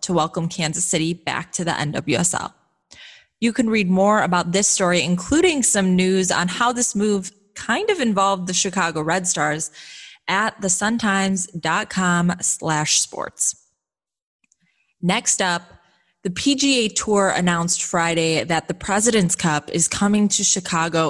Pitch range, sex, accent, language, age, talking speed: 165-215 Hz, female, American, English, 20-39, 135 wpm